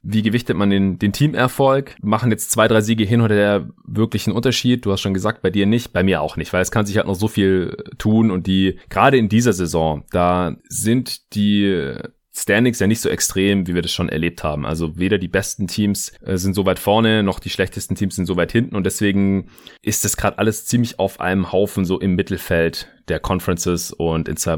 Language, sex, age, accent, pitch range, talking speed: German, male, 30-49, German, 90-115 Hz, 220 wpm